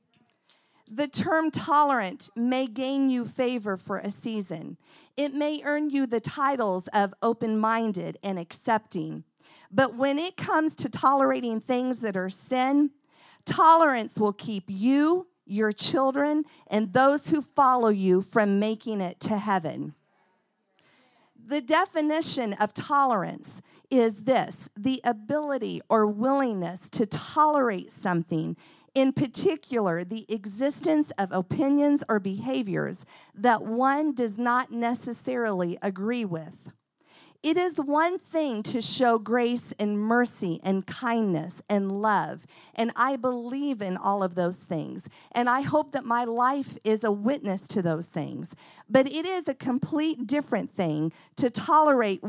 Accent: American